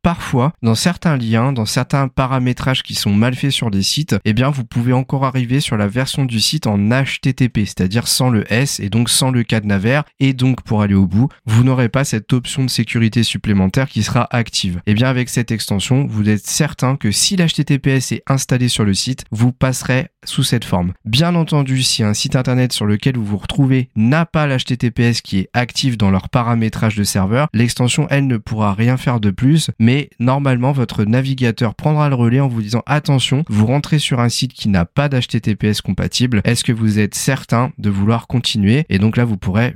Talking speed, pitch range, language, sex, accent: 210 wpm, 110-135 Hz, French, male, French